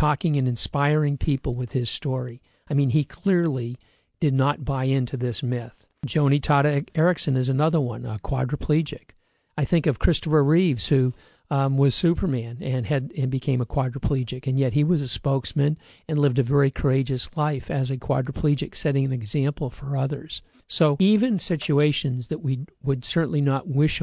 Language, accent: English, American